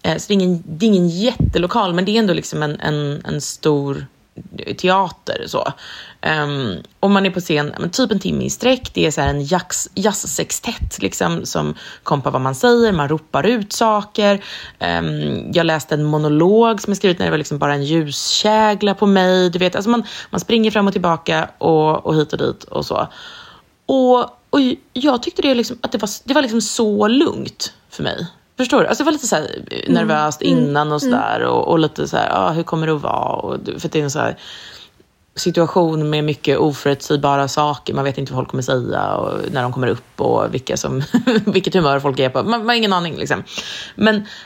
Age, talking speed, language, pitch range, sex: 30-49, 210 wpm, Swedish, 150-215 Hz, female